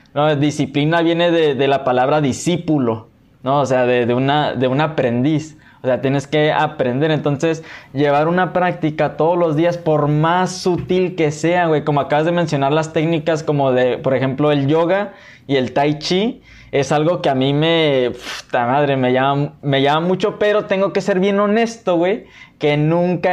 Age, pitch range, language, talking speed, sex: 20-39, 140-170 Hz, Spanish, 185 wpm, male